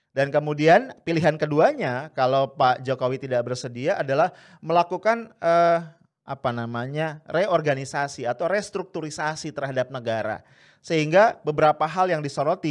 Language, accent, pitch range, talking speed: English, Indonesian, 125-170 Hz, 115 wpm